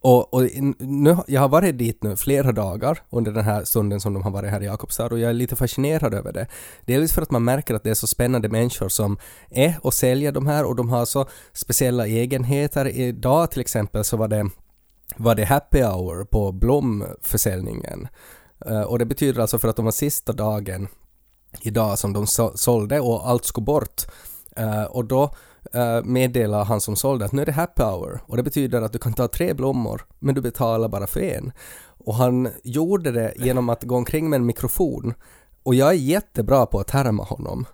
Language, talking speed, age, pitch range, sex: Swedish, 200 wpm, 20-39, 110-135 Hz, male